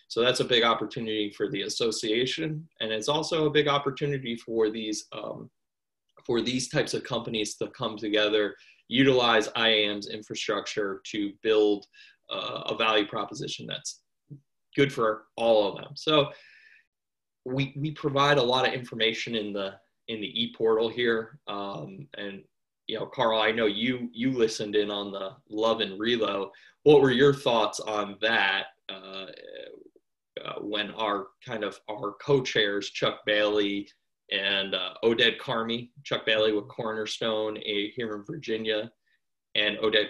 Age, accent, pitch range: 20-39, American, 105-135 Hz